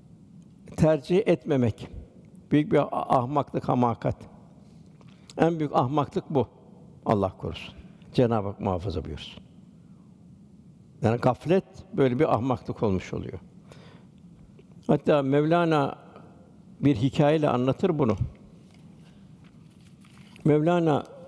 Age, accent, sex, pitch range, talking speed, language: 60-79, native, male, 140-175 Hz, 85 wpm, Turkish